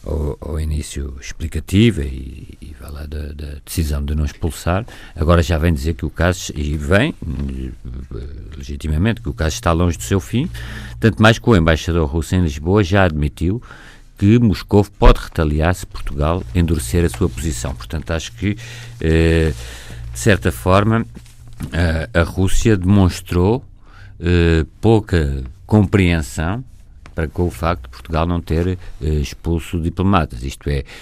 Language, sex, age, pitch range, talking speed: Portuguese, male, 50-69, 75-100 Hz, 145 wpm